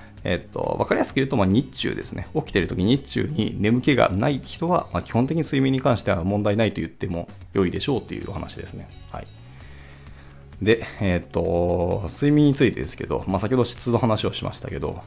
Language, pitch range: Japanese, 90-120 Hz